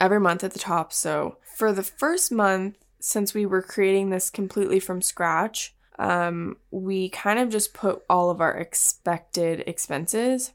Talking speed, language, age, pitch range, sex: 165 wpm, English, 10-29, 175-195 Hz, female